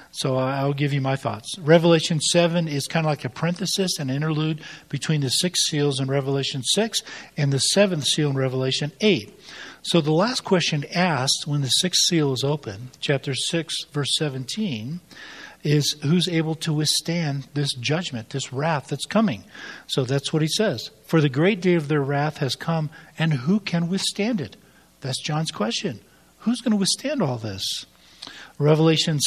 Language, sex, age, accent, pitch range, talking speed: English, male, 50-69, American, 135-170 Hz, 175 wpm